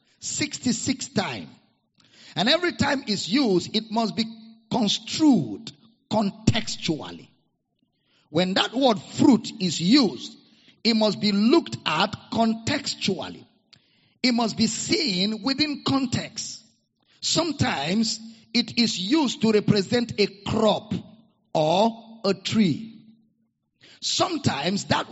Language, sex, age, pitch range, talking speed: English, male, 50-69, 195-240 Hz, 105 wpm